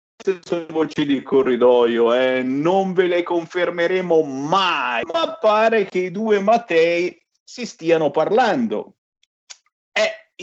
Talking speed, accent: 120 wpm, native